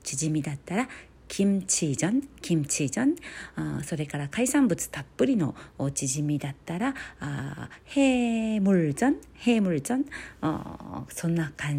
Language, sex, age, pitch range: Japanese, female, 40-59, 145-220 Hz